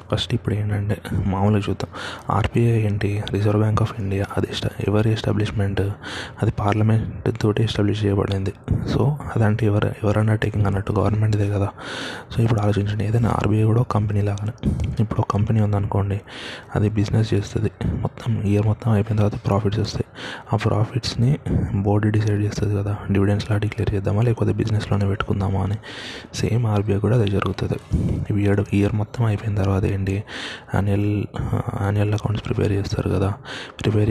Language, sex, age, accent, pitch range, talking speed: Telugu, male, 20-39, native, 100-115 Hz, 140 wpm